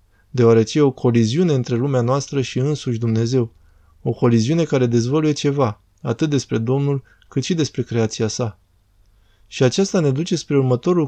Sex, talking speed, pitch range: male, 155 wpm, 115-145 Hz